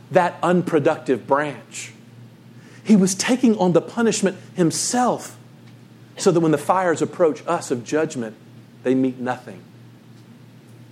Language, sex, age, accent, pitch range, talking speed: English, male, 40-59, American, 135-220 Hz, 125 wpm